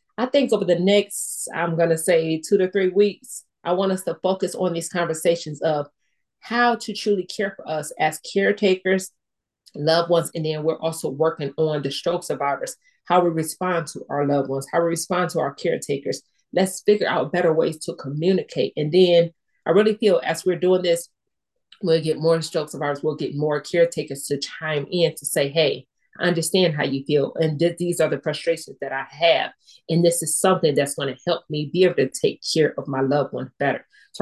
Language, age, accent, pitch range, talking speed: English, 30-49, American, 150-185 Hz, 205 wpm